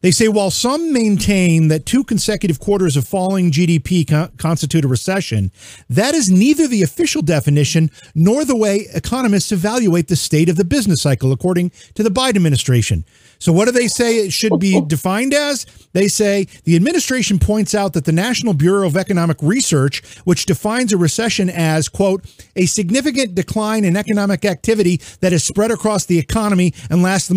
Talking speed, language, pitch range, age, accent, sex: 180 wpm, English, 170-240 Hz, 40-59, American, male